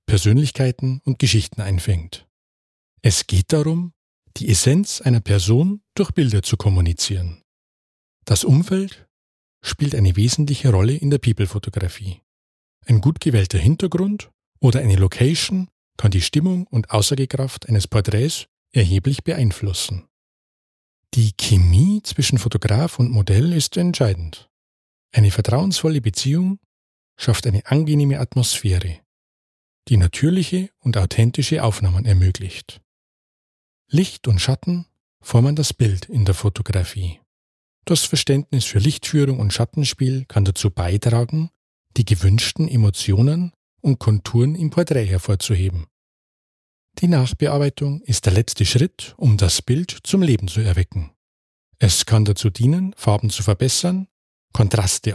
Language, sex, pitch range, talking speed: German, male, 100-145 Hz, 120 wpm